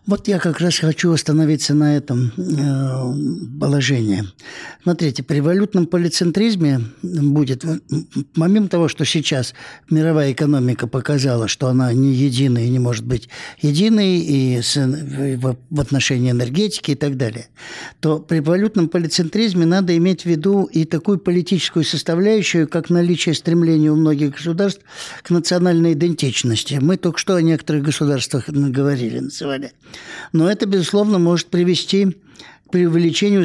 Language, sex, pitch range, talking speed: Russian, male, 140-175 Hz, 135 wpm